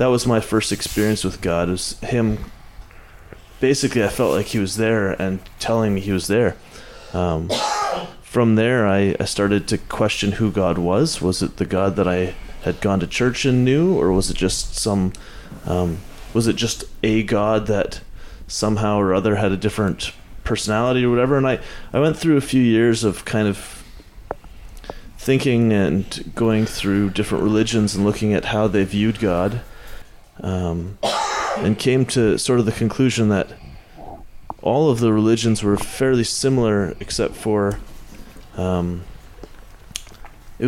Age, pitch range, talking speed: 30-49, 100-115 Hz, 160 wpm